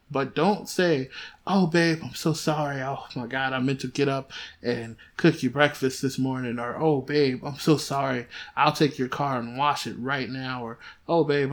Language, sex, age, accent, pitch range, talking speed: English, male, 20-39, American, 130-155 Hz, 210 wpm